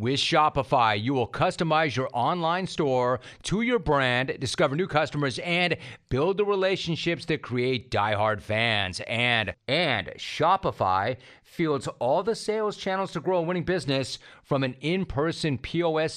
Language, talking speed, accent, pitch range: English, 145 wpm, American, 125-160 Hz